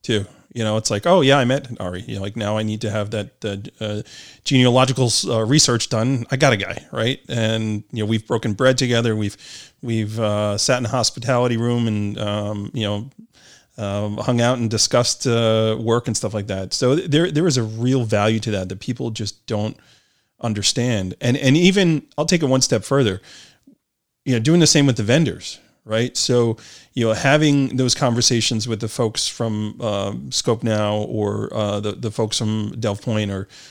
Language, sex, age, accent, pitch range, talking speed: English, male, 30-49, American, 105-135 Hz, 205 wpm